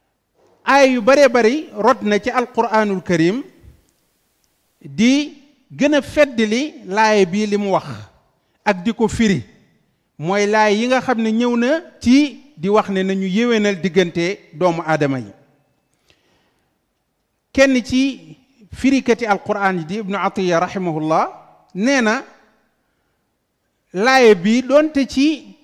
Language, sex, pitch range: French, male, 180-245 Hz